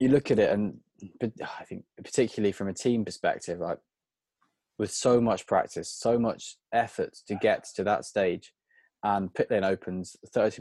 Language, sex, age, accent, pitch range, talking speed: English, male, 20-39, British, 95-115 Hz, 175 wpm